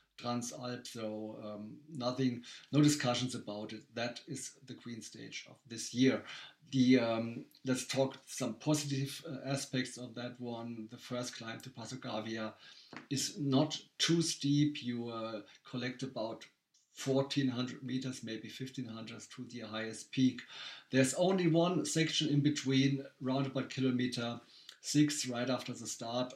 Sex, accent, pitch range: male, German, 115-135 Hz